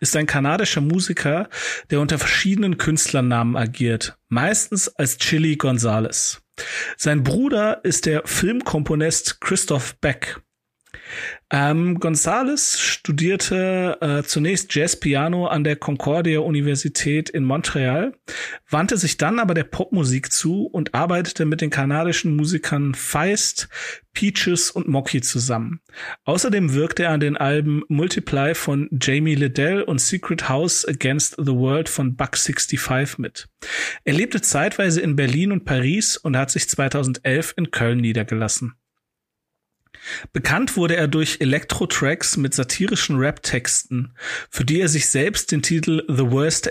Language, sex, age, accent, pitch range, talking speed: German, male, 40-59, German, 140-170 Hz, 130 wpm